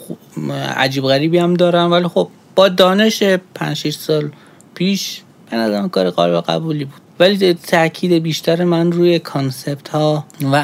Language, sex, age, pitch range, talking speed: Persian, male, 30-49, 135-170 Hz, 135 wpm